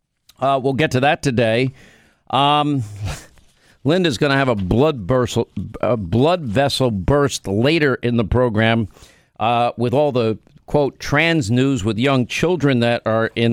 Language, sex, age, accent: English, male, 50-69, American